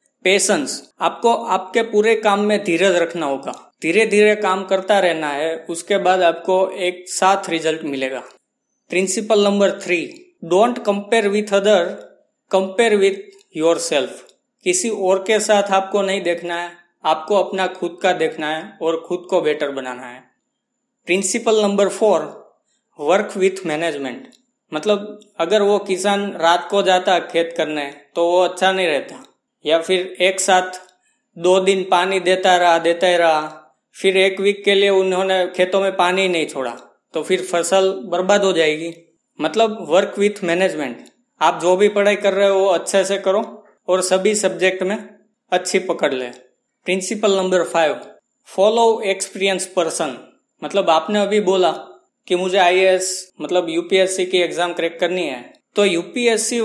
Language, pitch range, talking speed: Hindi, 175-205 Hz, 150 wpm